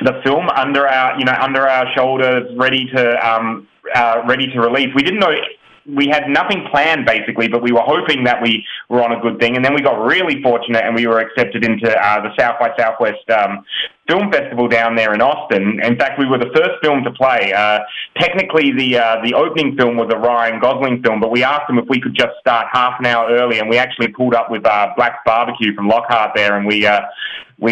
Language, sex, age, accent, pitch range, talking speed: English, male, 20-39, Australian, 115-145 Hz, 235 wpm